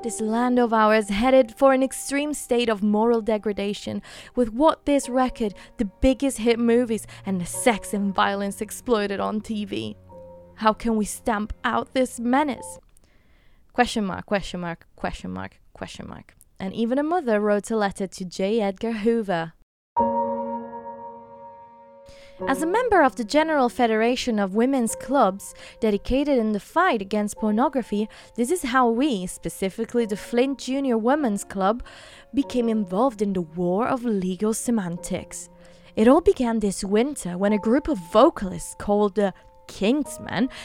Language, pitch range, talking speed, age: English, 190-250 Hz, 150 wpm, 20-39